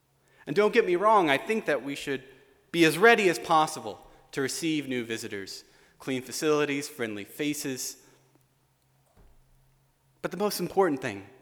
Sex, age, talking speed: male, 30-49, 145 wpm